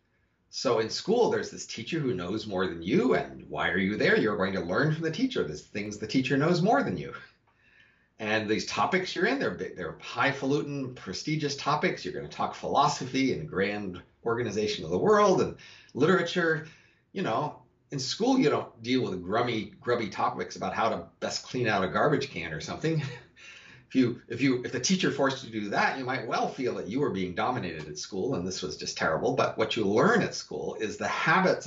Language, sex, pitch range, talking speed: English, male, 115-155 Hz, 210 wpm